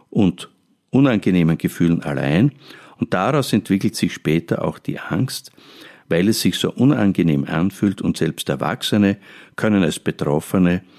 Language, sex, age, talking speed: German, male, 50-69, 130 wpm